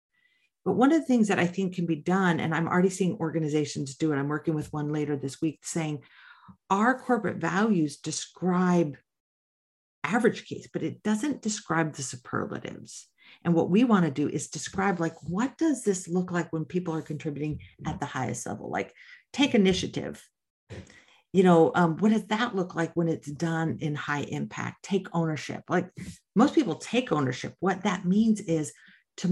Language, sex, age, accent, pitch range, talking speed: English, female, 50-69, American, 160-195 Hz, 180 wpm